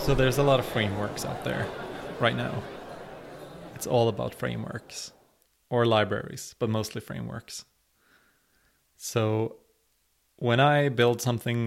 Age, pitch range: 20-39, 105-125 Hz